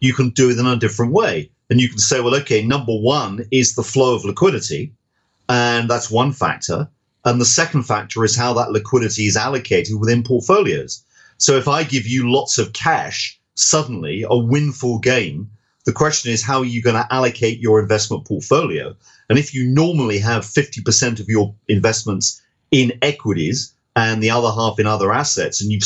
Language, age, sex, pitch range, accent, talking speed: English, 40-59, male, 110-135 Hz, British, 190 wpm